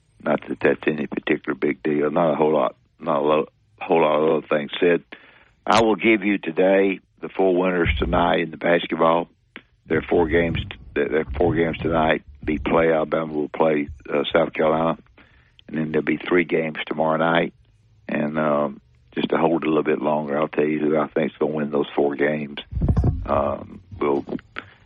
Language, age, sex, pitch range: English, 60-79, male, 75-85 Hz